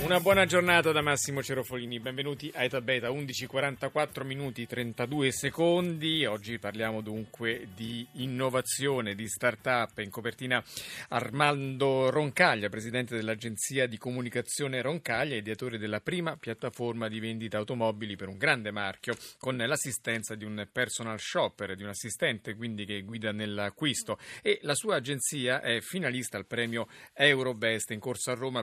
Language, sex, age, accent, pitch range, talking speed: Italian, male, 30-49, native, 115-145 Hz, 140 wpm